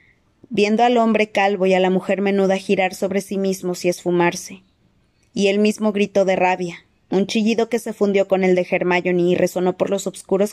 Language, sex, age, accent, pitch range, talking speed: Spanish, female, 20-39, Mexican, 180-210 Hz, 200 wpm